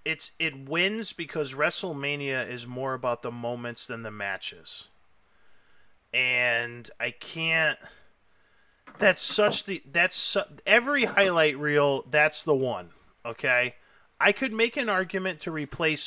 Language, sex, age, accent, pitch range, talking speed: English, male, 30-49, American, 125-160 Hz, 125 wpm